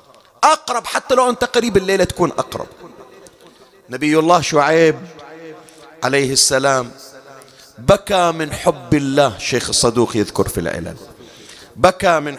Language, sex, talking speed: Arabic, male, 115 wpm